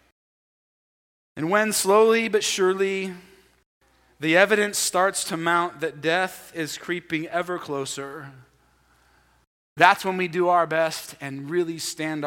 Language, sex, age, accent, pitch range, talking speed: English, male, 30-49, American, 150-205 Hz, 120 wpm